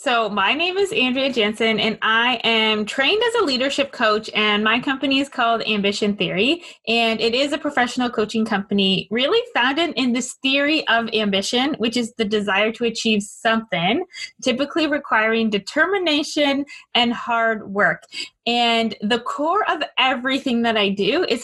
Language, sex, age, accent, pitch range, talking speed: English, female, 20-39, American, 210-270 Hz, 160 wpm